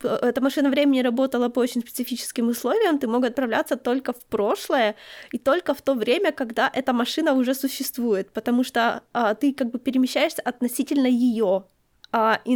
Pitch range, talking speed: 220-270 Hz, 165 wpm